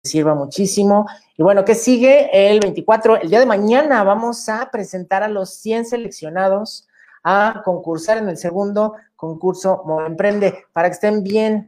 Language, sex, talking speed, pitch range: Spanish, male, 160 wpm, 165-215 Hz